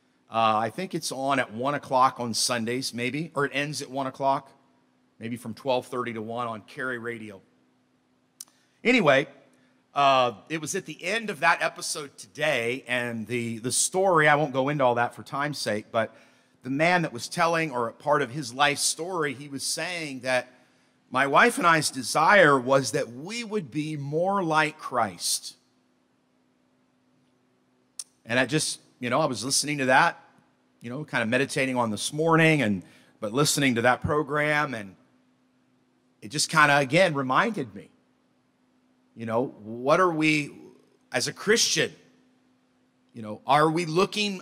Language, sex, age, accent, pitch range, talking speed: English, male, 50-69, American, 110-155 Hz, 170 wpm